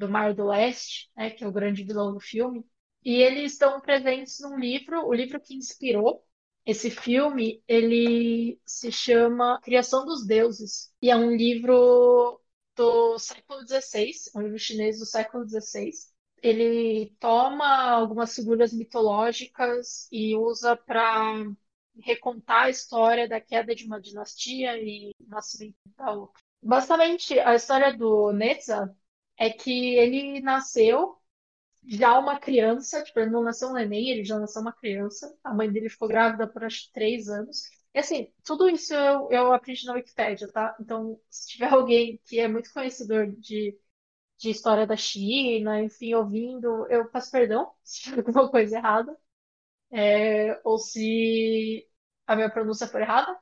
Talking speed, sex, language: 155 wpm, female, Portuguese